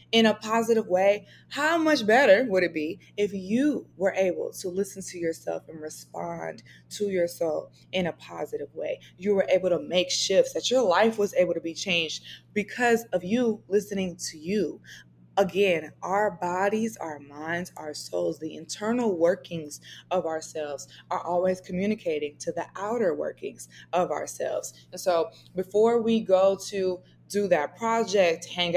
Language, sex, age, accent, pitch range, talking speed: English, female, 20-39, American, 170-220 Hz, 160 wpm